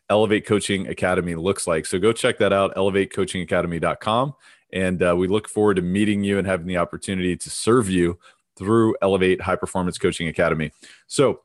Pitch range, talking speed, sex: 90-105 Hz, 175 wpm, male